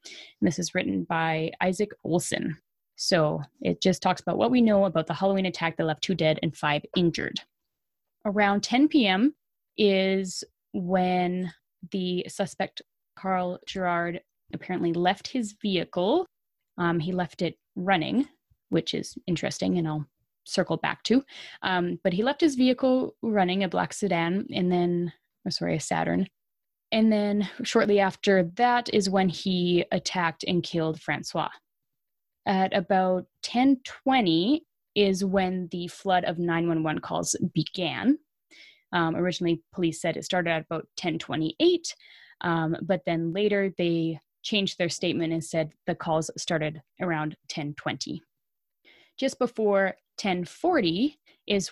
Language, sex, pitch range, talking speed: English, female, 170-205 Hz, 135 wpm